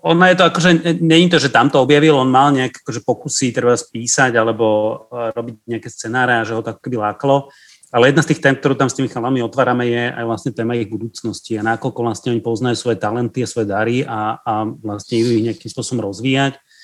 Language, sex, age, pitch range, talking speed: Slovak, male, 30-49, 115-140 Hz, 215 wpm